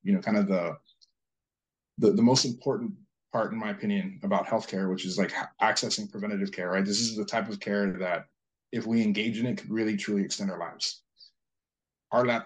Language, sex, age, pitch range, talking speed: English, male, 20-39, 100-160 Hz, 195 wpm